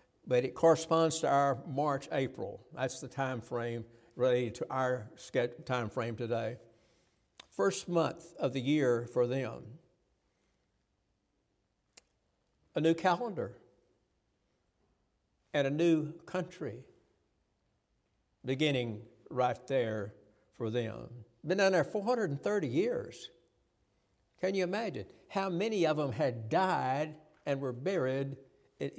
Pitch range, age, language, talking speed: 120-165 Hz, 60-79, English, 110 wpm